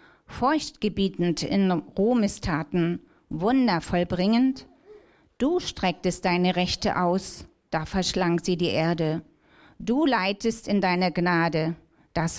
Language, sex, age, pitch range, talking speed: German, female, 40-59, 170-210 Hz, 100 wpm